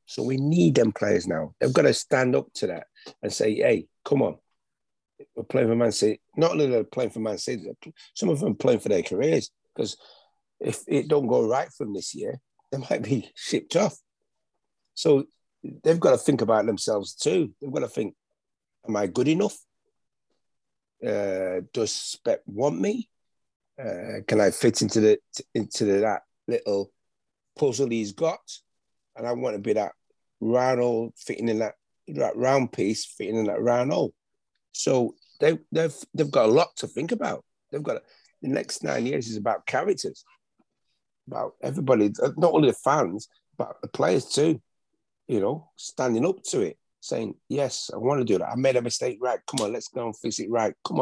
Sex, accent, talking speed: male, British, 195 wpm